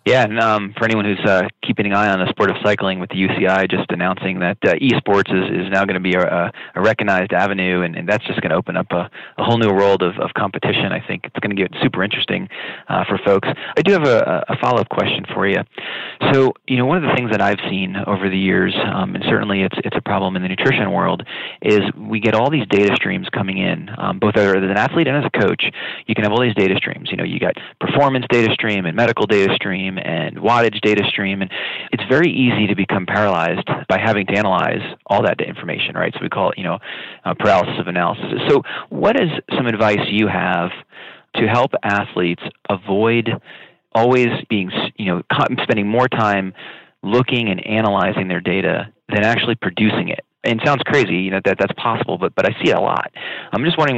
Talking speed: 225 wpm